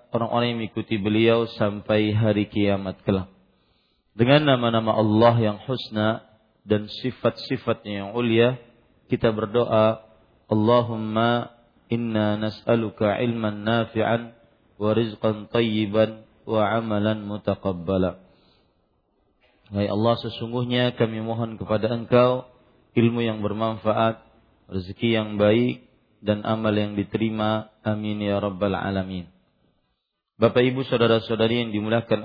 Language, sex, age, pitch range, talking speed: Malay, male, 40-59, 110-120 Hz, 100 wpm